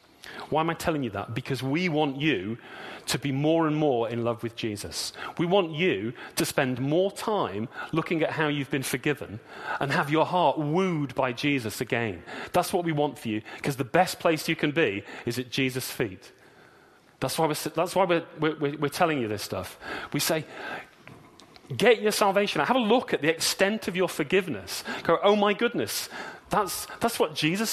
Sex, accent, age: male, British, 40-59